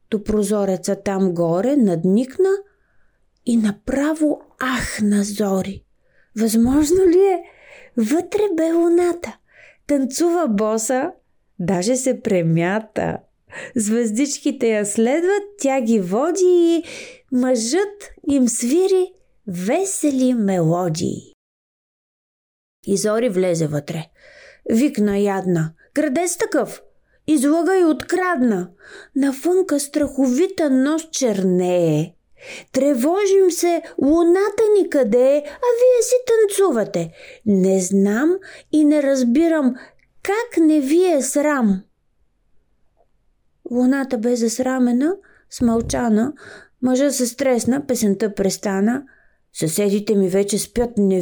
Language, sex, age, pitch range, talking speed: Bulgarian, female, 30-49, 210-340 Hz, 95 wpm